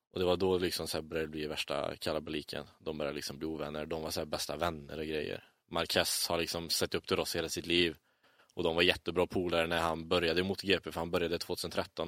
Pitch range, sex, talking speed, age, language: 90-105 Hz, male, 235 wpm, 20-39, English